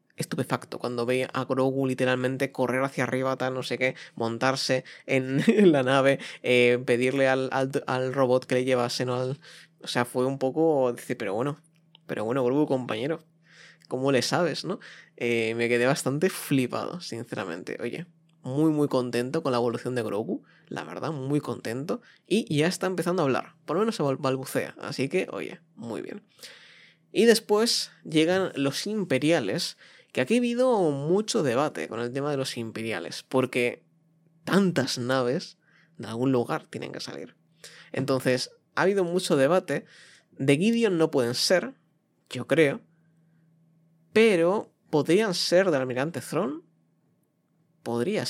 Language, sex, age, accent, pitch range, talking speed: Spanish, male, 20-39, Spanish, 125-165 Hz, 155 wpm